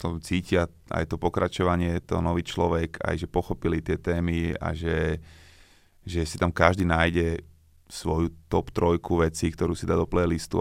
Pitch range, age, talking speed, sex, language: 85-95 Hz, 20-39, 160 wpm, male, Slovak